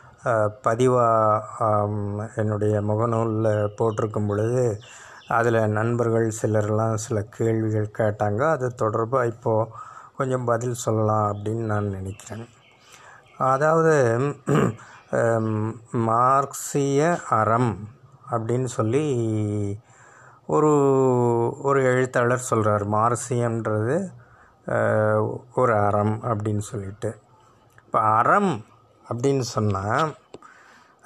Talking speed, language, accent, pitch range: 75 wpm, Tamil, native, 110-130 Hz